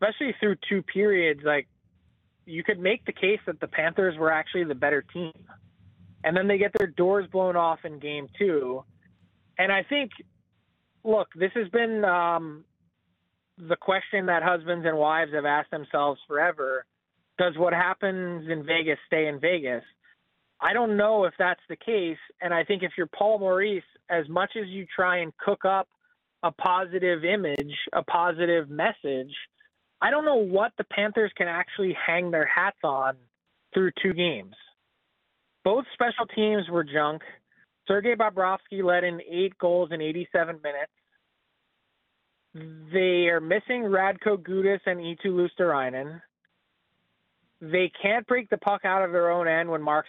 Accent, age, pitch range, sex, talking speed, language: American, 20-39, 160-200 Hz, male, 160 wpm, English